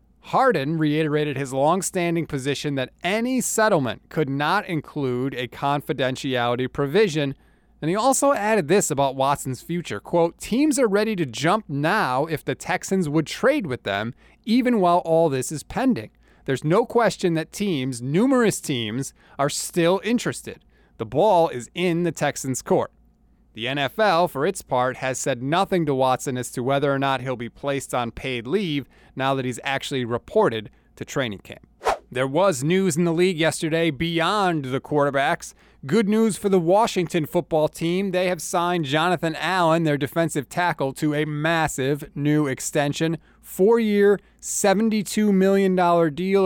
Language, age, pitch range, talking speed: English, 30-49, 140-185 Hz, 155 wpm